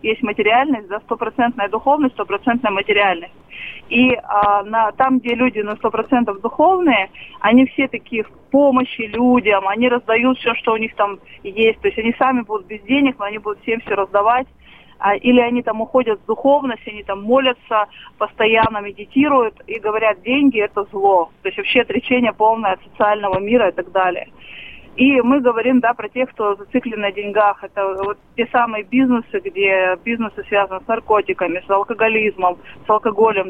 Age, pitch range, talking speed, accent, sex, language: 20-39, 205-250 Hz, 170 wpm, native, female, Russian